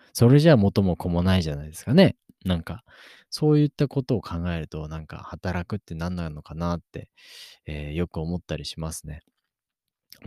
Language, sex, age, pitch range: Japanese, male, 20-39, 80-100 Hz